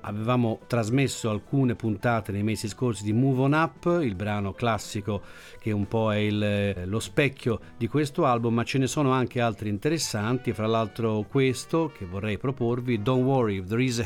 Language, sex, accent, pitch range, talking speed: Italian, male, native, 105-130 Hz, 185 wpm